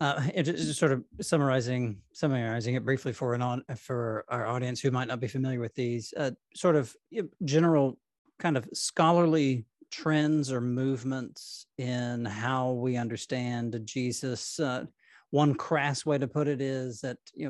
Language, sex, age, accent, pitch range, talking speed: English, male, 40-59, American, 125-150 Hz, 160 wpm